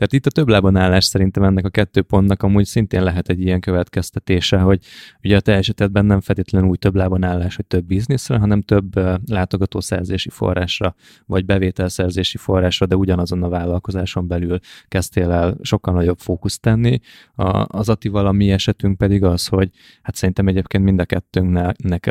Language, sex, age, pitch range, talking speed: Hungarian, male, 20-39, 90-100 Hz, 170 wpm